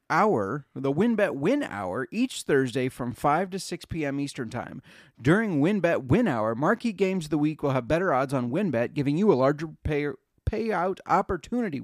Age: 30-49